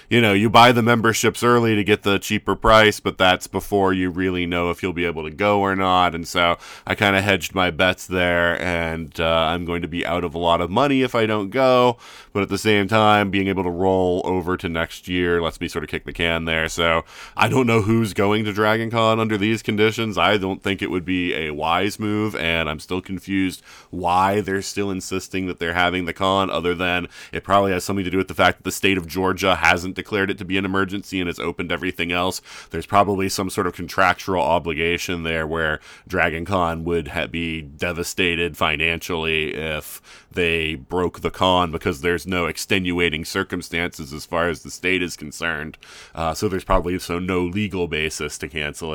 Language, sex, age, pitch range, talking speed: English, male, 30-49, 85-105 Hz, 215 wpm